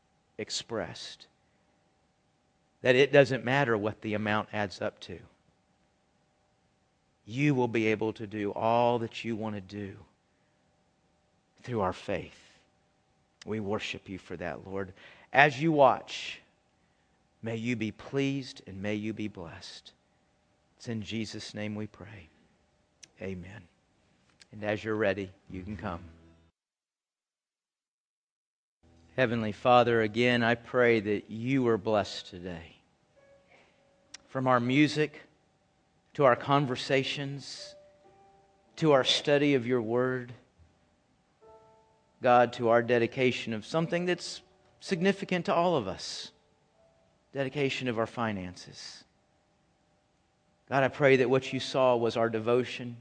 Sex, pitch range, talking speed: male, 105-135 Hz, 120 wpm